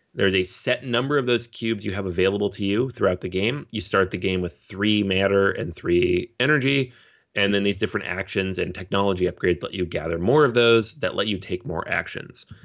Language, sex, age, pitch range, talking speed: English, male, 30-49, 95-115 Hz, 215 wpm